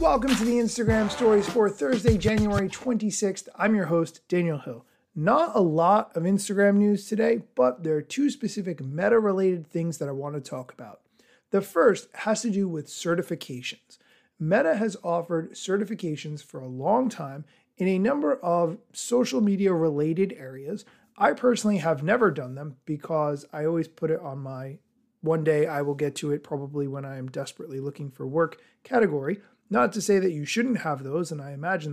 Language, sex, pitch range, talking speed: English, male, 150-215 Hz, 185 wpm